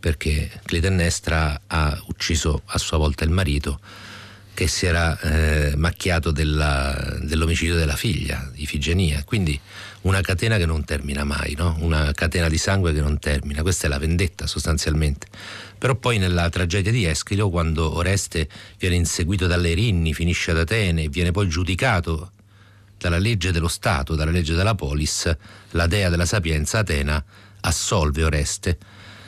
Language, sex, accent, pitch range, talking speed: Italian, male, native, 80-100 Hz, 150 wpm